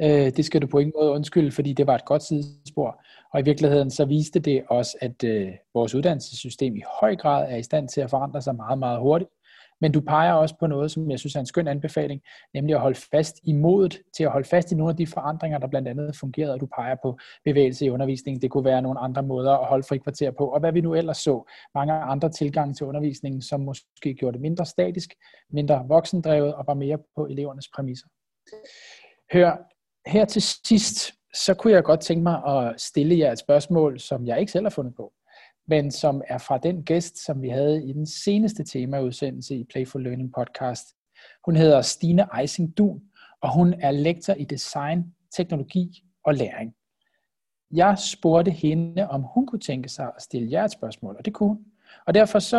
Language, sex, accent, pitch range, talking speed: Danish, male, native, 135-170 Hz, 205 wpm